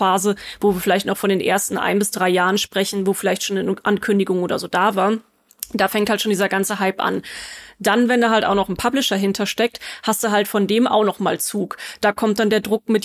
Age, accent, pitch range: 30-49, German, 195-225 Hz